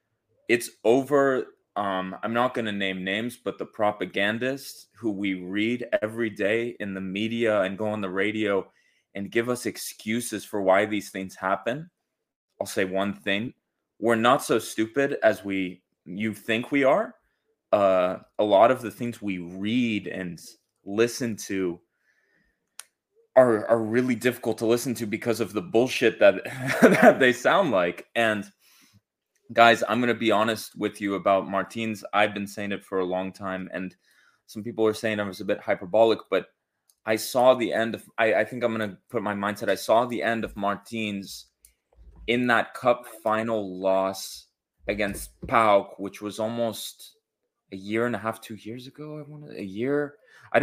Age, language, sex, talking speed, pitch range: 20-39, English, male, 175 wpm, 95-115 Hz